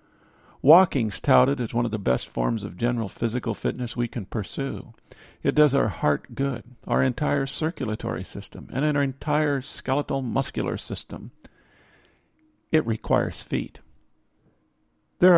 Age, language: 50-69, English